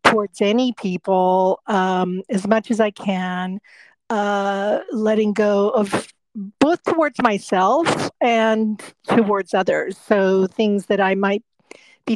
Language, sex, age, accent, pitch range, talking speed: English, female, 50-69, American, 190-235 Hz, 125 wpm